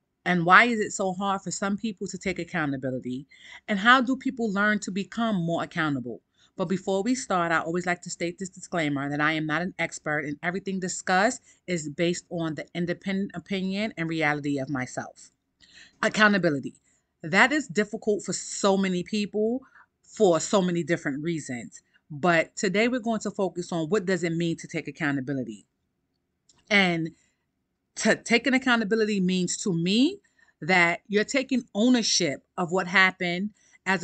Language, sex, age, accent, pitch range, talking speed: English, female, 30-49, American, 165-205 Hz, 165 wpm